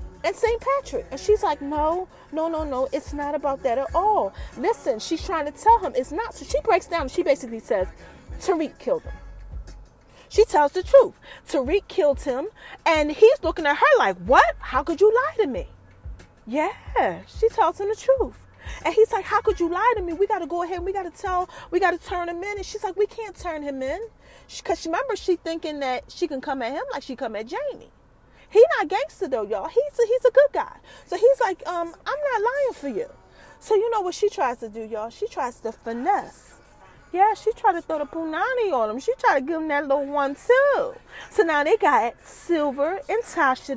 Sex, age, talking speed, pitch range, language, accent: female, 30-49, 230 wpm, 280-425 Hz, English, American